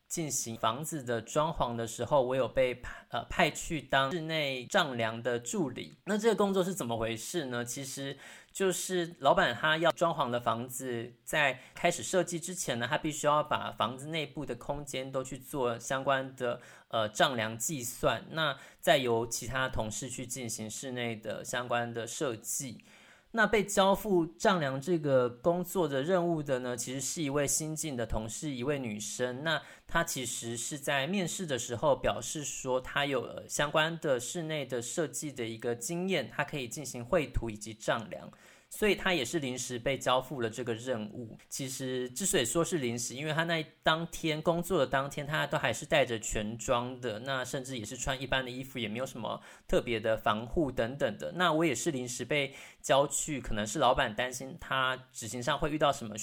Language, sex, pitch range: Chinese, male, 120-160 Hz